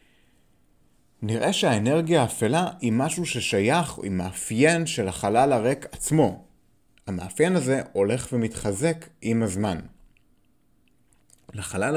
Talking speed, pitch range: 95 wpm, 100-145 Hz